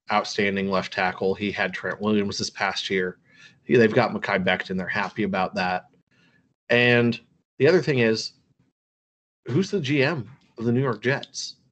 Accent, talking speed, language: American, 165 wpm, English